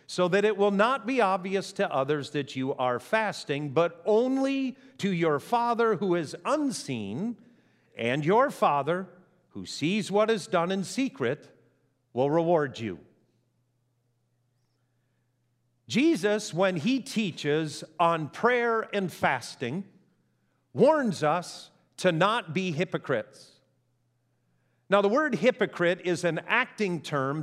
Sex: male